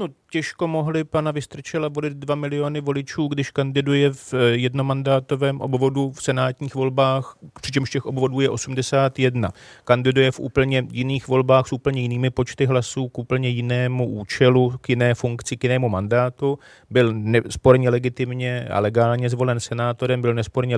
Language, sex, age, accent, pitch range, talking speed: Czech, male, 30-49, native, 125-145 Hz, 145 wpm